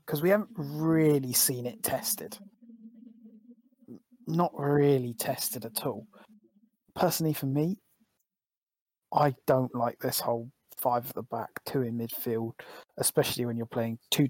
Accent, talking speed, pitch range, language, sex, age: British, 135 wpm, 125-150 Hz, English, male, 20-39